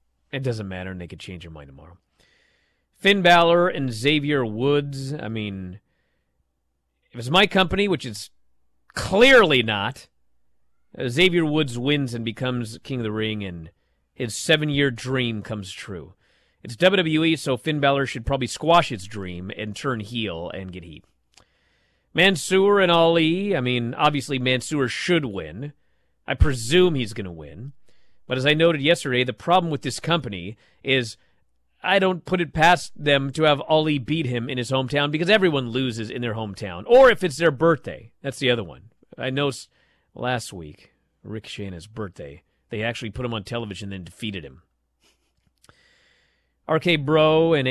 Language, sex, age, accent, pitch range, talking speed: English, male, 40-59, American, 95-150 Hz, 165 wpm